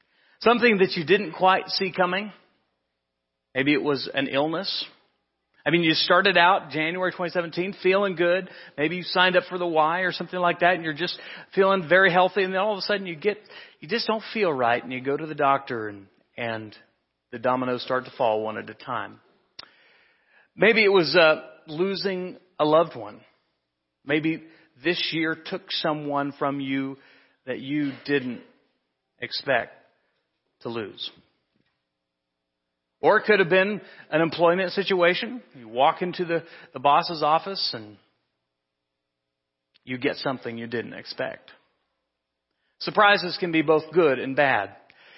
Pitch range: 130-185 Hz